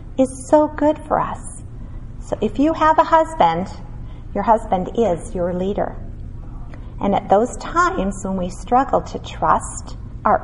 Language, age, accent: English, 40-59, American